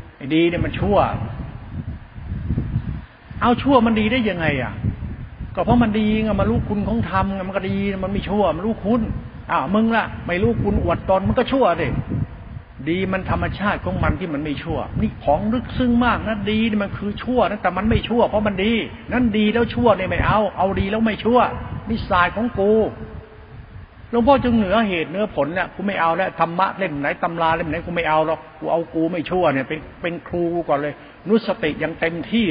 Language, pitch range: Thai, 135-190 Hz